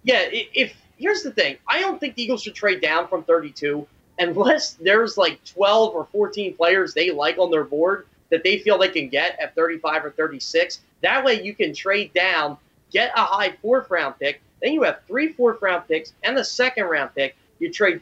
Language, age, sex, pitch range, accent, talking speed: English, 30-49, male, 170-230 Hz, American, 205 wpm